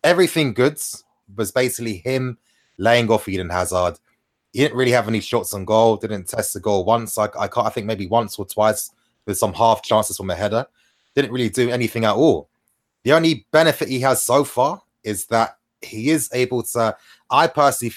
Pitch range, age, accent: 105-130 Hz, 20-39, British